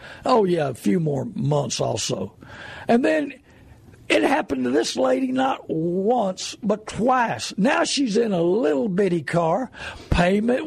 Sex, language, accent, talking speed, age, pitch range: male, English, American, 145 wpm, 60-79, 140-220 Hz